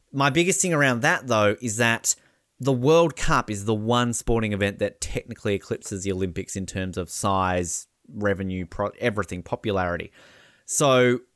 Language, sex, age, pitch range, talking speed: English, male, 20-39, 105-135 Hz, 155 wpm